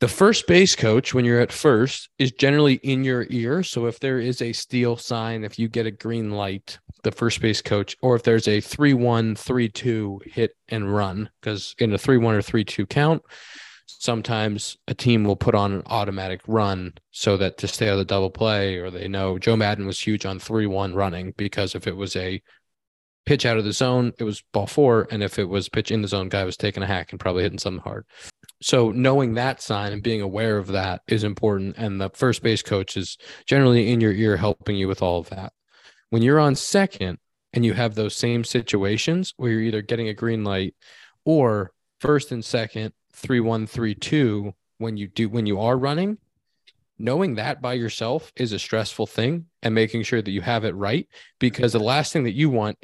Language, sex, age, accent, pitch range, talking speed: English, male, 20-39, American, 100-125 Hz, 215 wpm